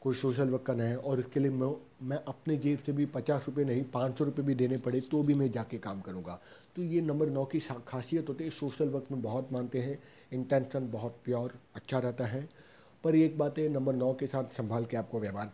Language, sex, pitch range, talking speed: Hindi, male, 125-145 Hz, 230 wpm